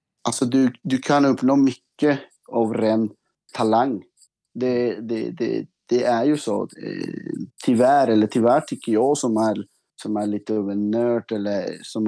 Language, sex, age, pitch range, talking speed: Swedish, male, 30-49, 105-125 Hz, 145 wpm